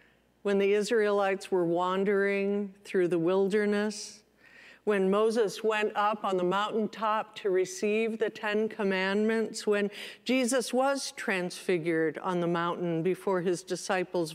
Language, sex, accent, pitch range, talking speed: English, female, American, 190-235 Hz, 125 wpm